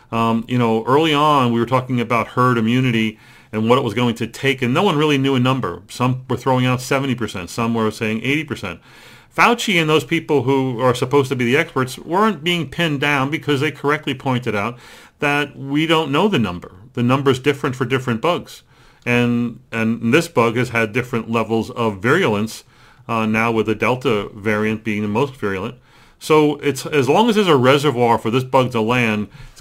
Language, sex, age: English, male, 40-59